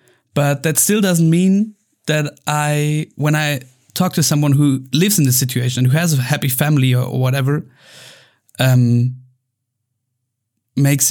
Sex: male